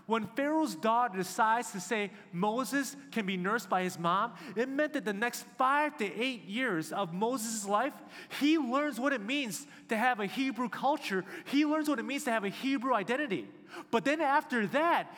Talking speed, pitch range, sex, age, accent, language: 195 wpm, 205-275 Hz, male, 30-49, American, English